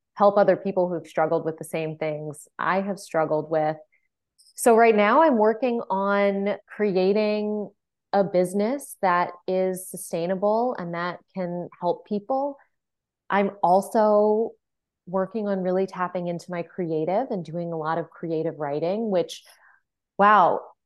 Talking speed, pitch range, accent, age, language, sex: 140 wpm, 170-215 Hz, American, 20-39, English, female